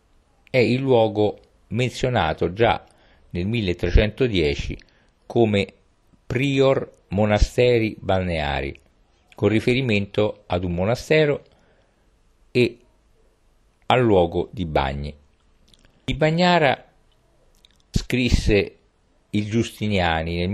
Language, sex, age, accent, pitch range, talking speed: Italian, male, 50-69, native, 85-115 Hz, 80 wpm